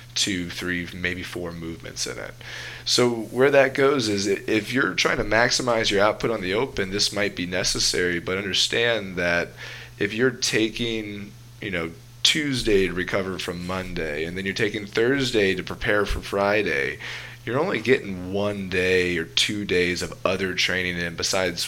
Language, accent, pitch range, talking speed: English, American, 90-120 Hz, 170 wpm